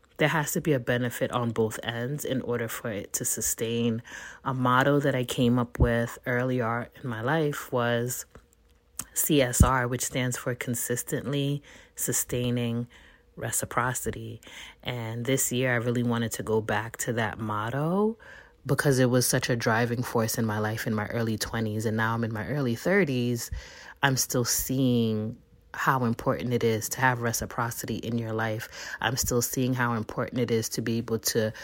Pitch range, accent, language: 115-130 Hz, American, English